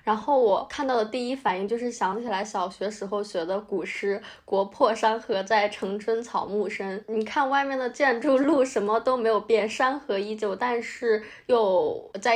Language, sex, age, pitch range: Chinese, female, 20-39, 205-245 Hz